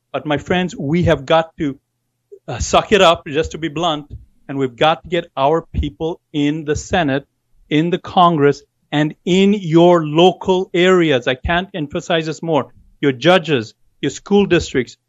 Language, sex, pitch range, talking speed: English, male, 145-180 Hz, 170 wpm